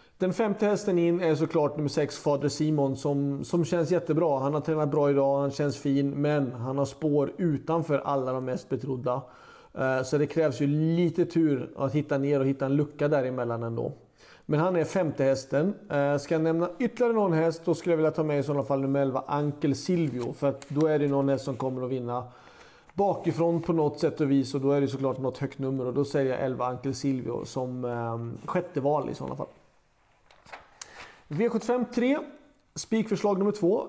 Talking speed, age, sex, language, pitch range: 205 wpm, 40-59, male, Swedish, 140-175 Hz